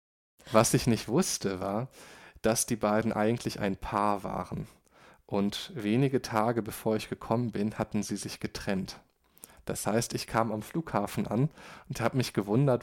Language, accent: Chinese, German